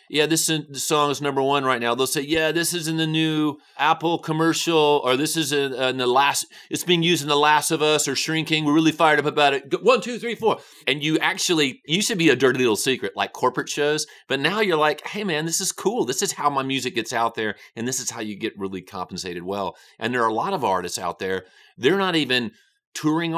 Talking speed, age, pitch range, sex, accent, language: 255 wpm, 30-49, 115-160 Hz, male, American, English